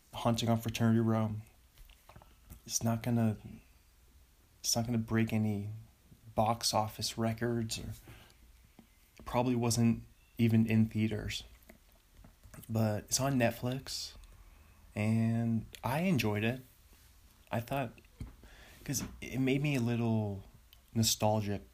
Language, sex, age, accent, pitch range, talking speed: English, male, 30-49, American, 95-115 Hz, 110 wpm